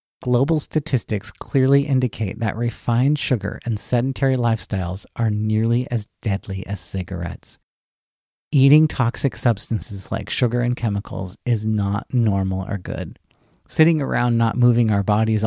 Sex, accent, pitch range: male, American, 100-125 Hz